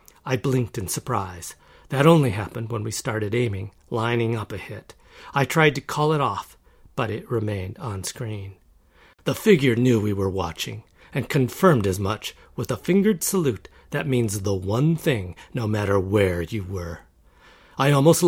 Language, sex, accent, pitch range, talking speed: English, male, American, 100-140 Hz, 170 wpm